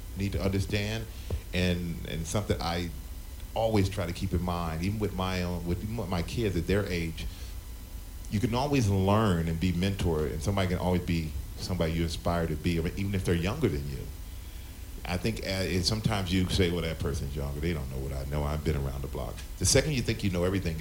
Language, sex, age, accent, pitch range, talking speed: English, male, 40-59, American, 85-100 Hz, 220 wpm